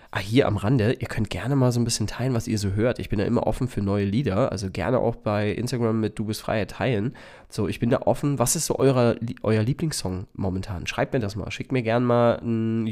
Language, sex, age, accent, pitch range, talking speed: German, male, 20-39, German, 100-120 Hz, 255 wpm